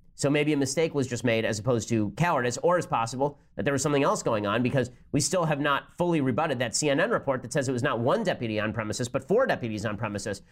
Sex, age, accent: male, 30-49, American